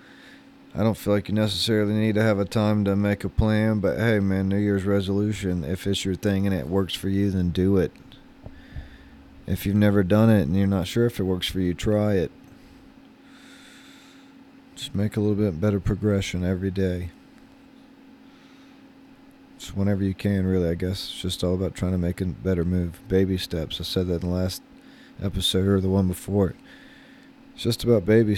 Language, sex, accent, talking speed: English, male, American, 195 wpm